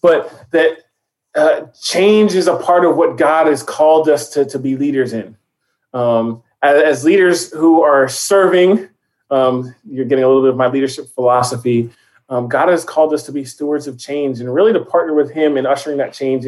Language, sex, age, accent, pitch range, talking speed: English, male, 30-49, American, 130-175 Hz, 200 wpm